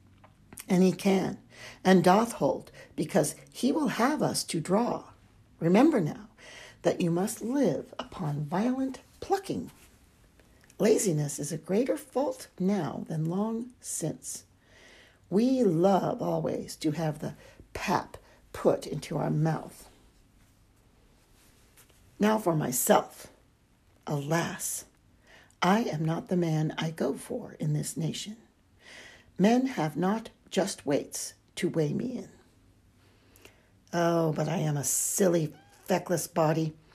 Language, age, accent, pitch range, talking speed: English, 60-79, American, 130-190 Hz, 120 wpm